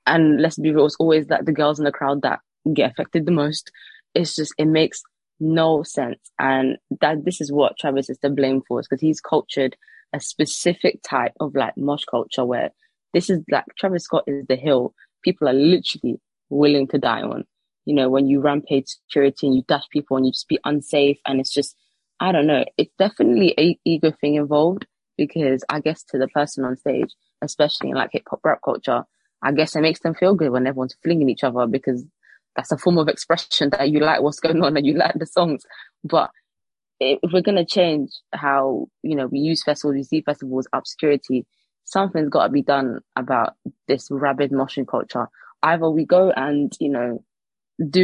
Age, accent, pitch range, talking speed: 20-39, British, 140-165 Hz, 205 wpm